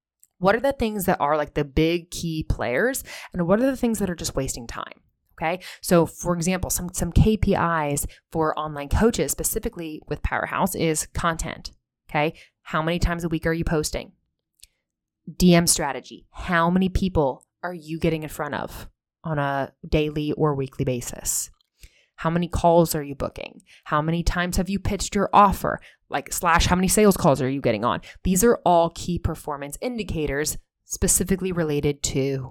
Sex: female